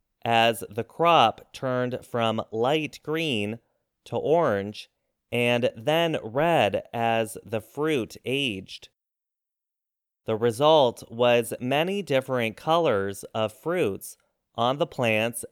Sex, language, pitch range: male, English, 115-155 Hz